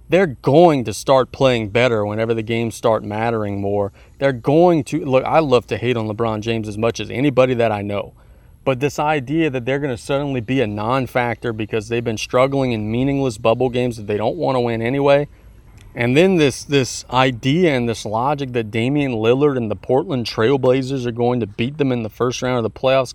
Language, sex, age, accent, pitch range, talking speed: English, male, 30-49, American, 110-135 Hz, 215 wpm